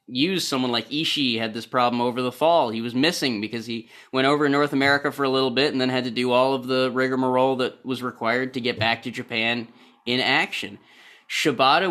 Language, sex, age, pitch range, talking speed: English, male, 30-49, 125-145 Hz, 220 wpm